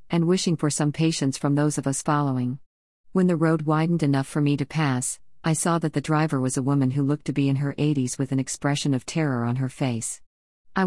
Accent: American